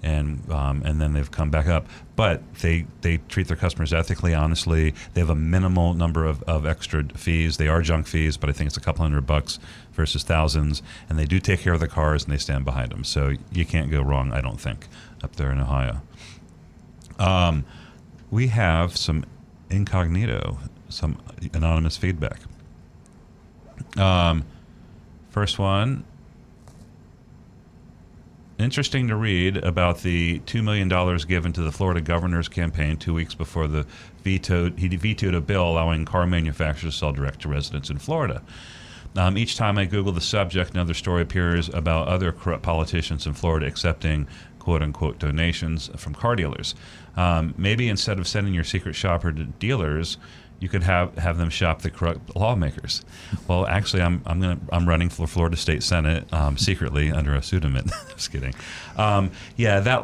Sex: male